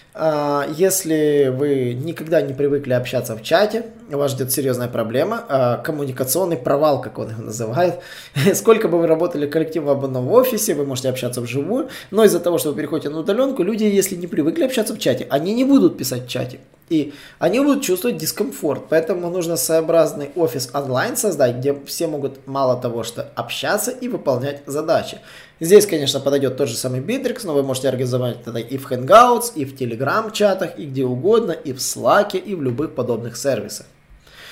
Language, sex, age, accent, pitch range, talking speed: Russian, male, 20-39, native, 130-175 Hz, 175 wpm